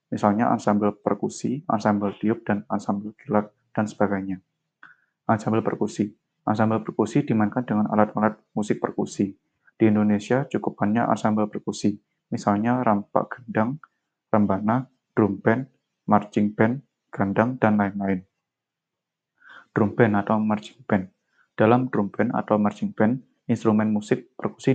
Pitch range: 105-125 Hz